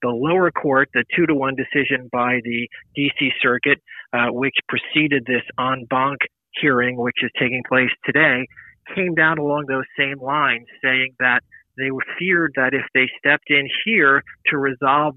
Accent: American